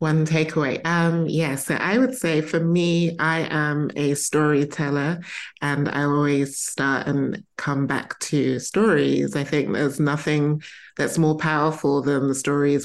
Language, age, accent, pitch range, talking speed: English, 20-39, British, 135-155 Hz, 150 wpm